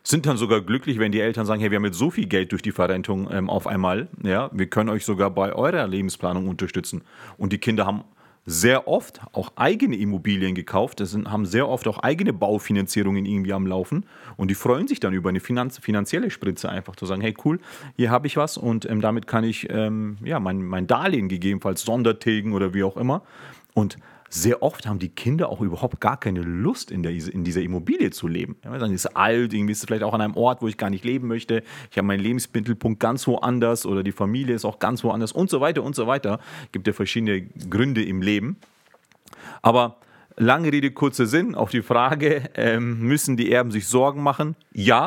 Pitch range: 100-125 Hz